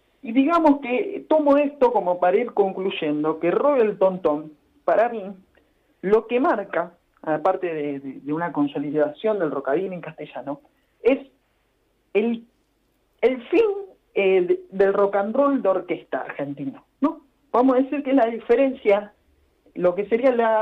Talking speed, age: 150 wpm, 40-59